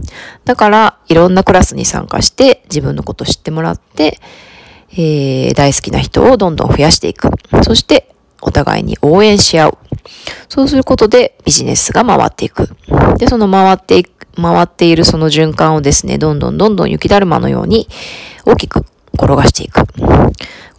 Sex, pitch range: female, 145-205 Hz